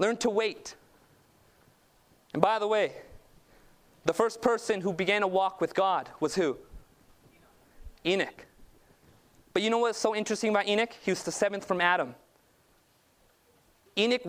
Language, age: English, 30-49